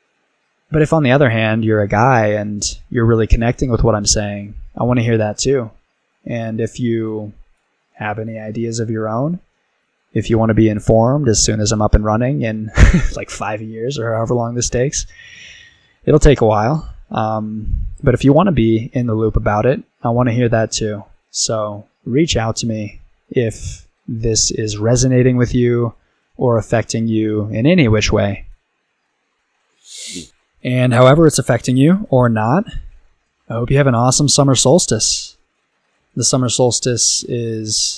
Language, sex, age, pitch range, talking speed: English, male, 20-39, 105-125 Hz, 180 wpm